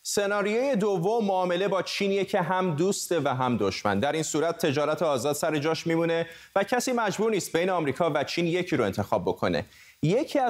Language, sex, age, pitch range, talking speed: Persian, male, 30-49, 135-180 Hz, 185 wpm